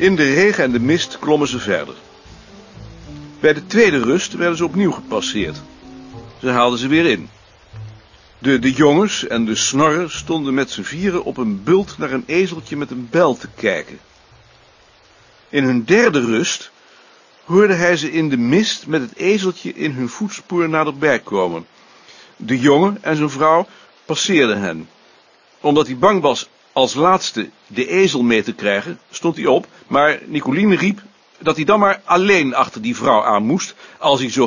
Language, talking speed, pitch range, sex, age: Dutch, 170 wpm, 125-185 Hz, male, 60-79